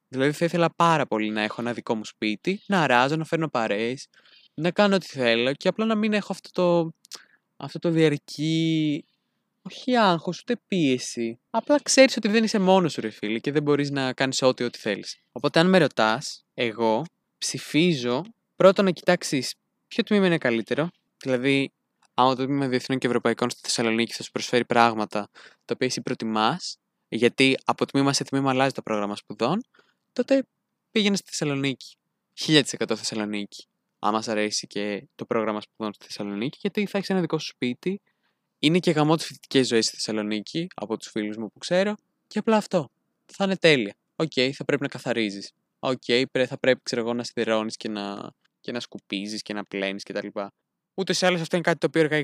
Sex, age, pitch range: male, 20-39, 115-175 Hz